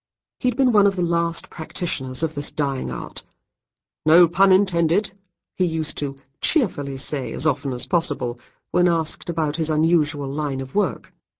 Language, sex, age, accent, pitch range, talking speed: English, female, 50-69, British, 145-190 Hz, 165 wpm